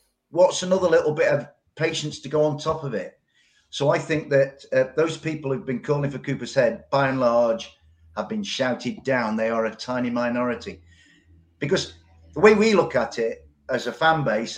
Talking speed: 200 wpm